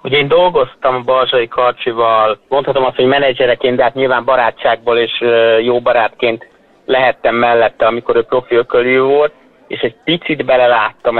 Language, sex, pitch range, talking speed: Hungarian, male, 115-130 Hz, 140 wpm